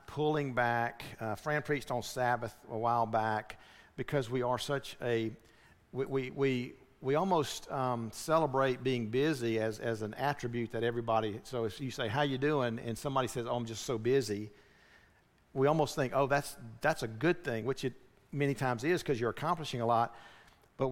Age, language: 50-69, English